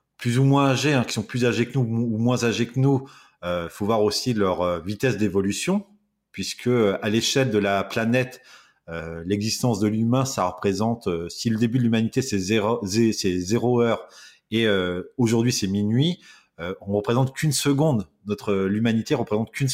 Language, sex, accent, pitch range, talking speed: French, male, French, 100-125 Hz, 200 wpm